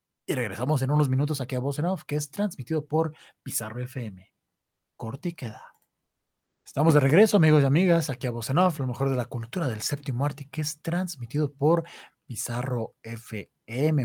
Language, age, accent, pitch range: Spanish, 30-49, Mexican, 120-155 Hz